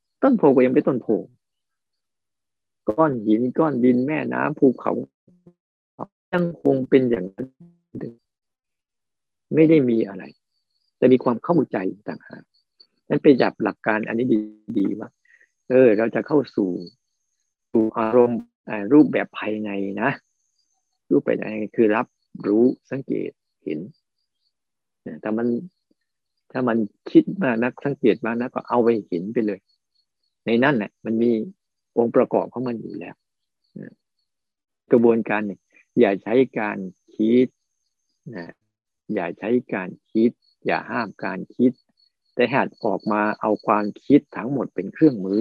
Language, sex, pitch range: Thai, male, 105-130 Hz